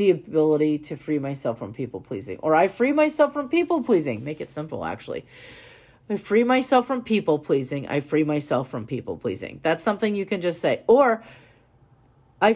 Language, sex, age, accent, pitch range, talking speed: English, female, 40-59, American, 145-205 Hz, 185 wpm